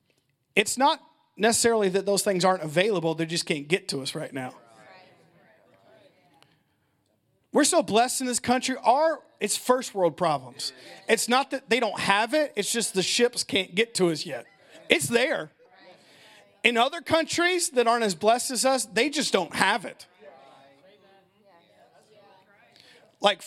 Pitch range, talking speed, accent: 190-265 Hz, 155 wpm, American